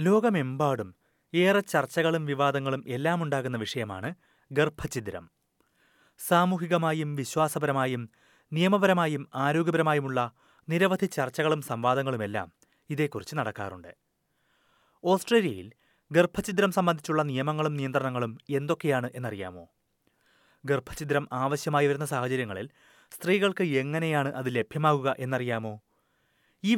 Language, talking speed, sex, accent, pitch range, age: Malayalam, 80 wpm, male, native, 125-160 Hz, 30-49